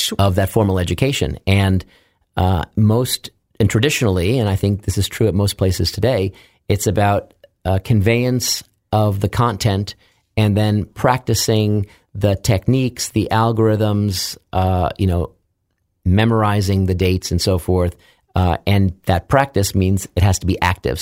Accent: American